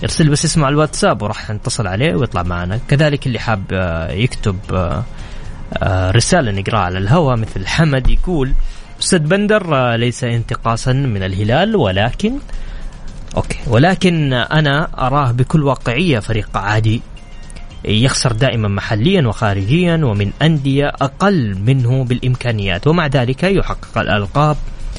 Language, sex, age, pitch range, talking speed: Arabic, male, 20-39, 105-140 Hz, 115 wpm